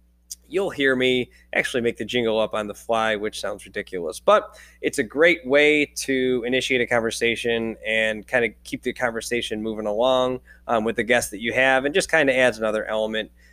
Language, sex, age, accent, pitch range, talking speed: English, male, 20-39, American, 105-135 Hz, 200 wpm